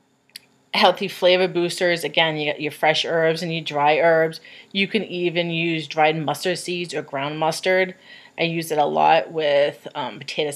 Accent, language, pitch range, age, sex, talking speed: American, English, 150-180 Hz, 30-49, female, 175 wpm